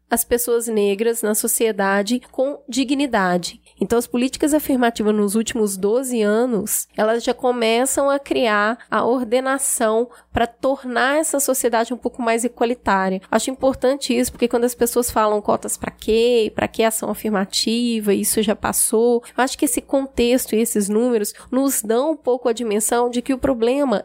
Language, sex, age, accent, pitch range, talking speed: Portuguese, female, 10-29, Brazilian, 215-260 Hz, 160 wpm